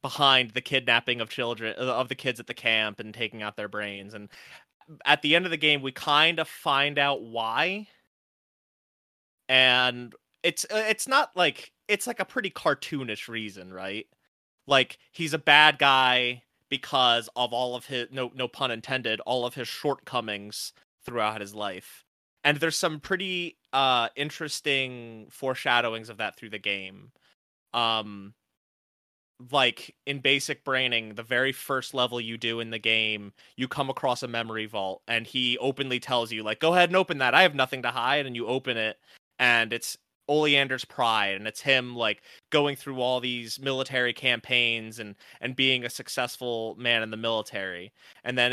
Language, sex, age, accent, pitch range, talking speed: English, male, 30-49, American, 110-135 Hz, 170 wpm